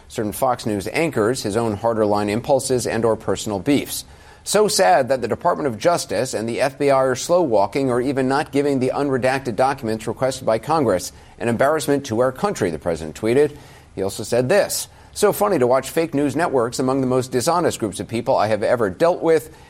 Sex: male